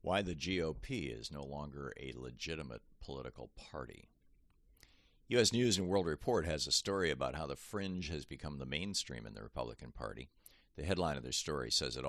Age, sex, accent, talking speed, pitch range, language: 50-69, male, American, 185 wpm, 70-85 Hz, English